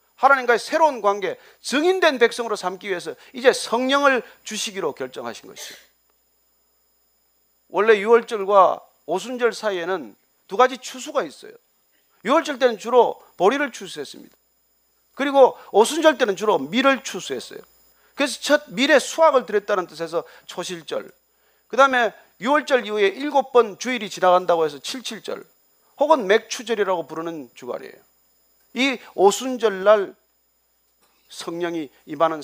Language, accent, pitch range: Korean, native, 200-265 Hz